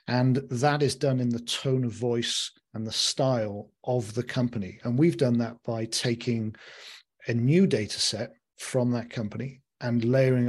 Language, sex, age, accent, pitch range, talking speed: English, male, 40-59, British, 115-130 Hz, 170 wpm